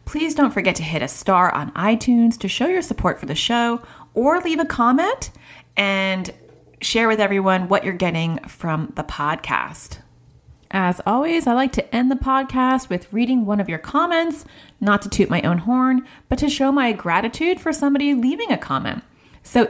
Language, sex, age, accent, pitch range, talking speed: English, female, 30-49, American, 165-245 Hz, 185 wpm